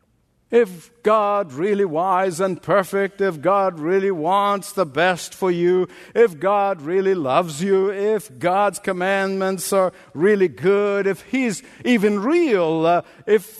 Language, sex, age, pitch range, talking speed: English, male, 60-79, 170-225 Hz, 135 wpm